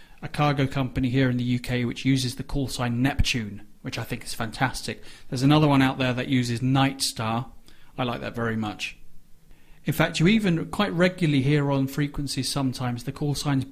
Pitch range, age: 120-145 Hz, 30-49